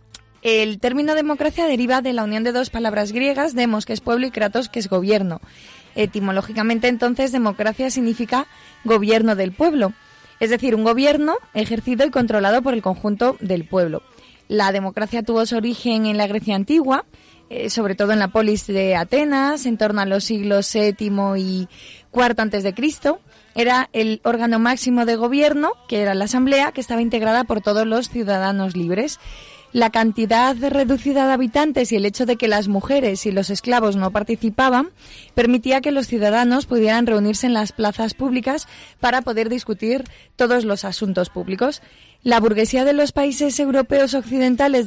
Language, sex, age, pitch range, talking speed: Spanish, female, 20-39, 210-260 Hz, 165 wpm